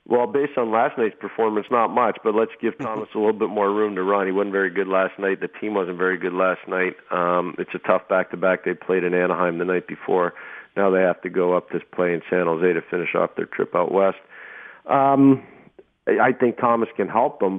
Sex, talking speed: male, 235 wpm